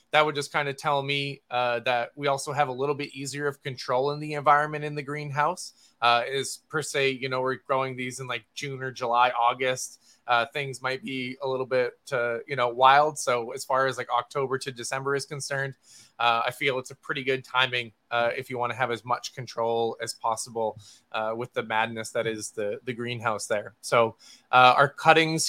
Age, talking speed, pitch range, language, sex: 20-39, 220 wpm, 125-150 Hz, English, male